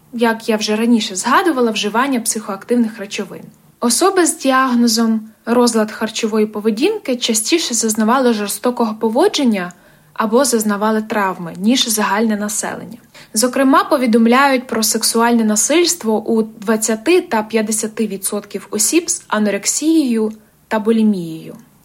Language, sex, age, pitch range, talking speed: Ukrainian, female, 20-39, 220-260 Hz, 105 wpm